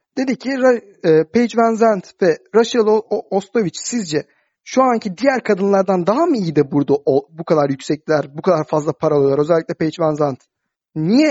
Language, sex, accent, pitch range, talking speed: Turkish, male, native, 165-240 Hz, 180 wpm